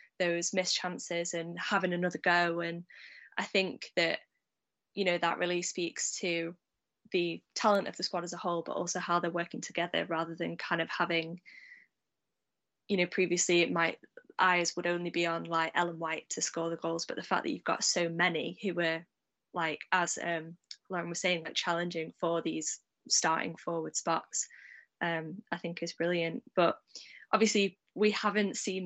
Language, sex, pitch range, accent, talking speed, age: English, female, 165-180 Hz, British, 180 wpm, 10-29